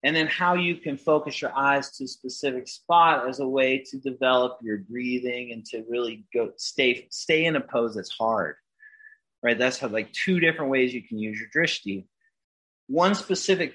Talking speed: 190 wpm